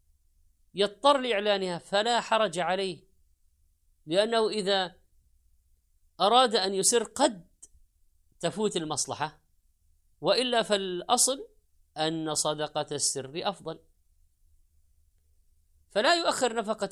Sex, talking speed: female, 80 wpm